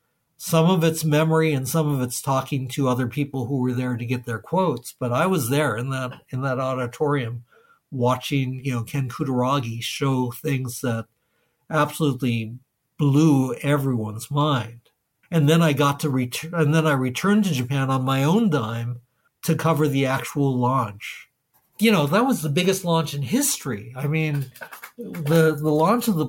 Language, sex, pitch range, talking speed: English, male, 130-160 Hz, 175 wpm